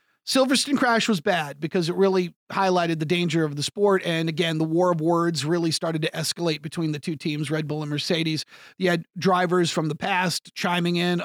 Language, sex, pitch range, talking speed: English, male, 160-195 Hz, 210 wpm